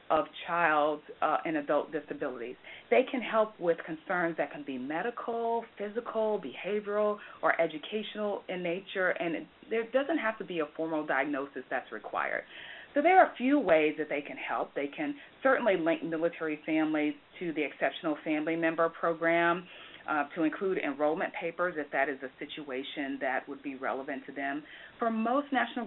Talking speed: 170 wpm